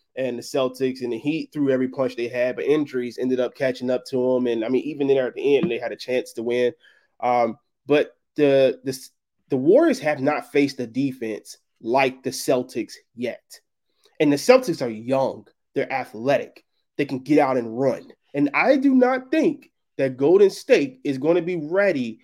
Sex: male